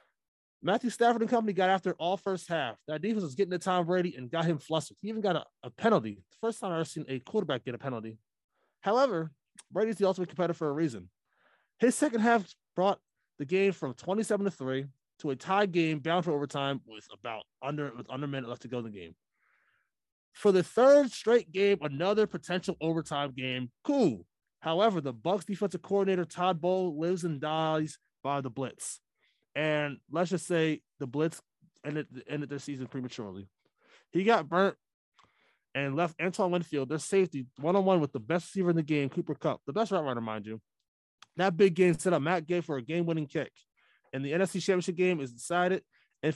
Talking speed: 195 wpm